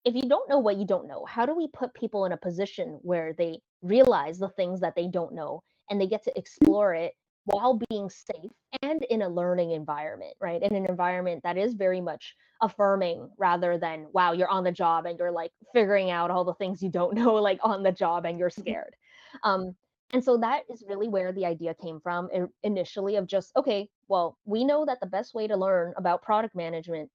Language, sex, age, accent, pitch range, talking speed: English, female, 20-39, American, 175-225 Hz, 220 wpm